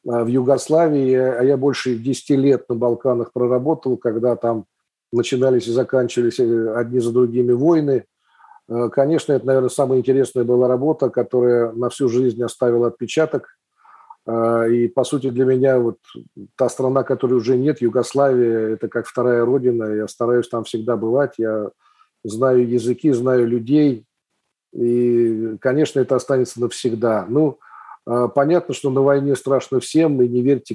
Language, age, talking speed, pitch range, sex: Russian, 40-59, 140 wpm, 120-135 Hz, male